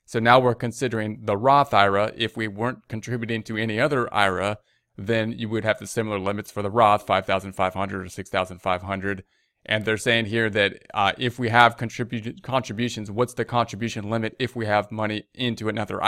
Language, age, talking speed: English, 30-49, 200 wpm